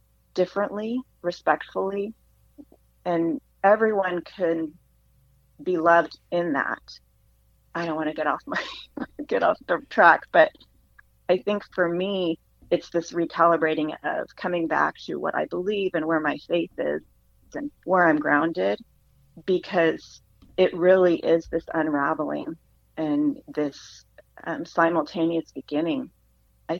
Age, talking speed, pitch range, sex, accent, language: 30-49, 125 wpm, 145-190 Hz, female, American, English